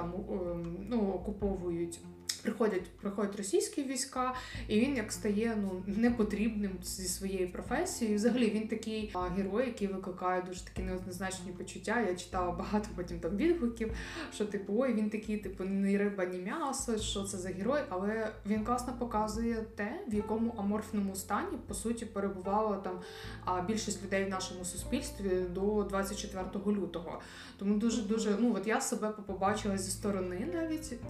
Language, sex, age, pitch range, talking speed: Ukrainian, female, 20-39, 185-220 Hz, 150 wpm